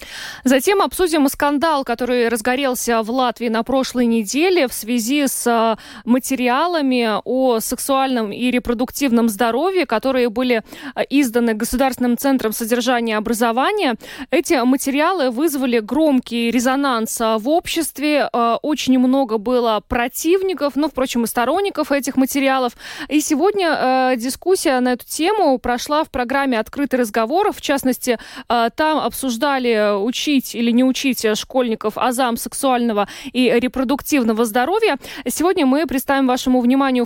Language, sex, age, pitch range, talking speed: Russian, female, 20-39, 235-275 Hz, 120 wpm